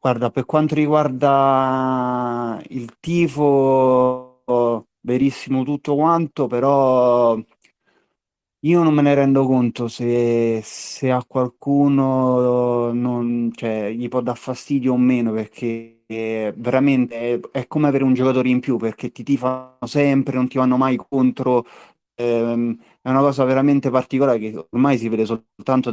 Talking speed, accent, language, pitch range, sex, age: 140 wpm, native, Italian, 115-135 Hz, male, 30-49